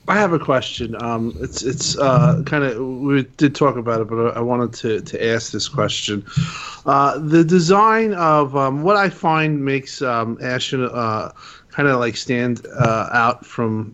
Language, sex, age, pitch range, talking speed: English, male, 30-49, 115-155 Hz, 180 wpm